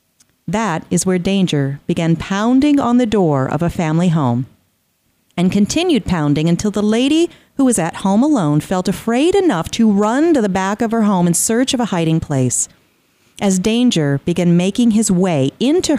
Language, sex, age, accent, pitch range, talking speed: English, female, 40-59, American, 165-240 Hz, 180 wpm